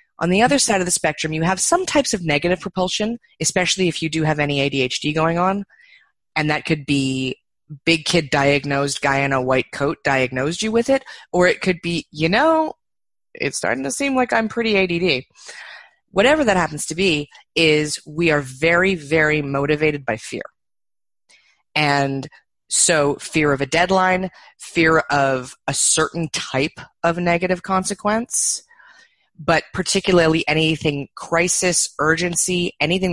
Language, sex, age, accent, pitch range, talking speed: English, female, 30-49, American, 145-185 Hz, 155 wpm